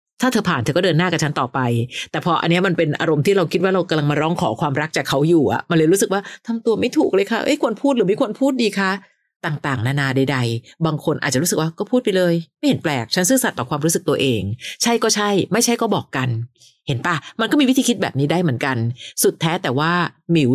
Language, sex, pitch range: Thai, female, 140-195 Hz